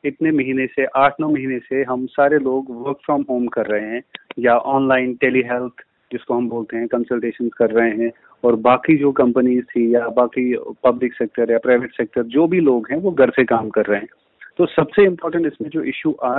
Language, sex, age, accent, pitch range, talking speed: Hindi, male, 30-49, native, 125-150 Hz, 210 wpm